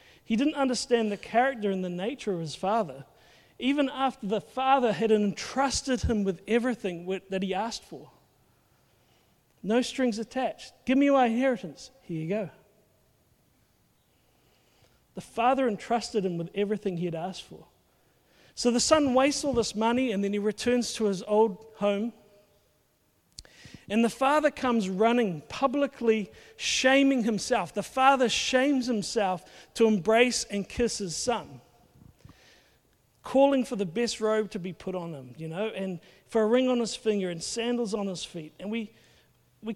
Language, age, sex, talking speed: English, 40-59, male, 155 wpm